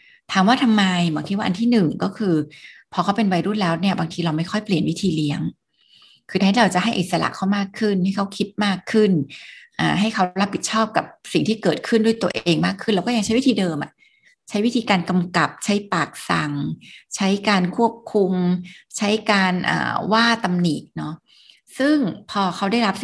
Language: Thai